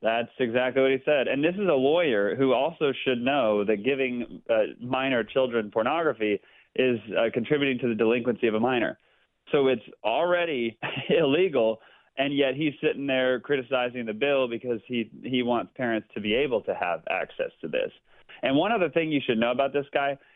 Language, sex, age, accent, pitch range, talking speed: English, male, 30-49, American, 110-135 Hz, 190 wpm